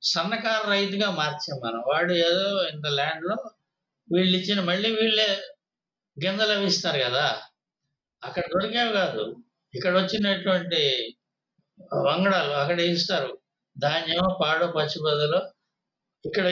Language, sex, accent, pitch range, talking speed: Telugu, male, native, 165-195 Hz, 110 wpm